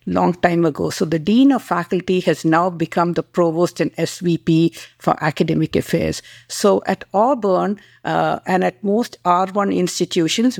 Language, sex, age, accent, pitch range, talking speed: English, female, 50-69, Indian, 170-210 Hz, 155 wpm